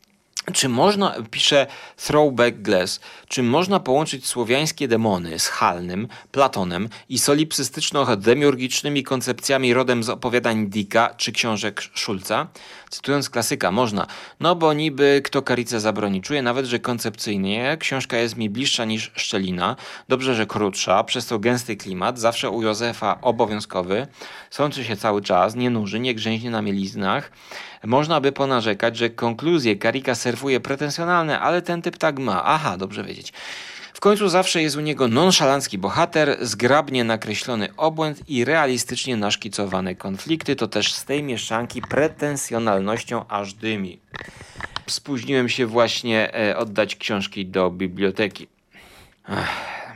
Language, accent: Polish, native